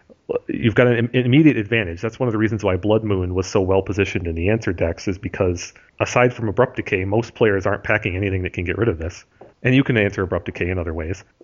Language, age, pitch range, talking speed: English, 40-59, 95-110 Hz, 240 wpm